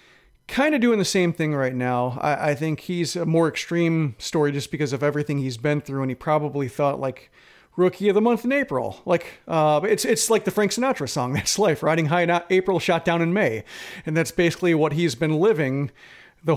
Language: English